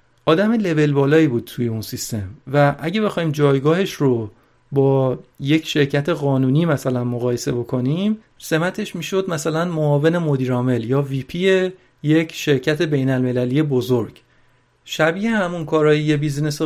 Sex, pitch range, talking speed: male, 130-170 Hz, 125 wpm